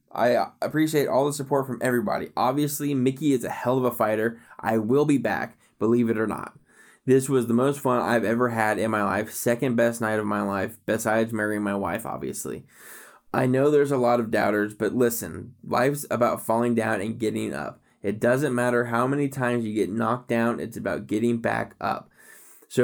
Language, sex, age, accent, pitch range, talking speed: English, male, 20-39, American, 110-130 Hz, 200 wpm